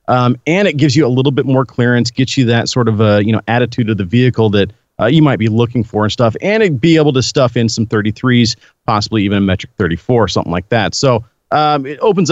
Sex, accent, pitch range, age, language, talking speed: male, American, 110-140 Hz, 40-59, English, 260 wpm